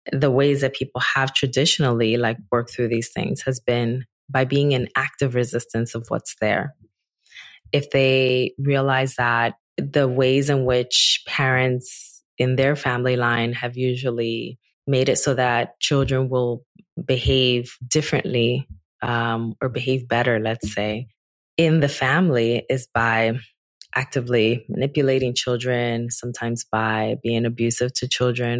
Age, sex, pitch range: 20-39, female, 115-135 Hz